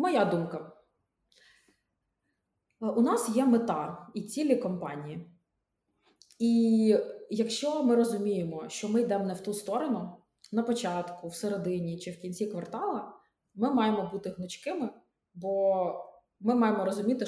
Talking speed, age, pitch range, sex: 125 wpm, 20-39, 180-220 Hz, female